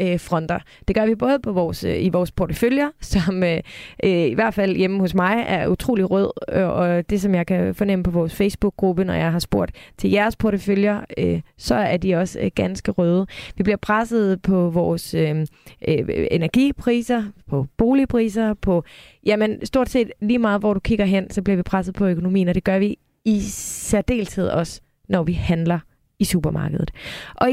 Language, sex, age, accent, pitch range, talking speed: Danish, female, 20-39, native, 180-230 Hz, 175 wpm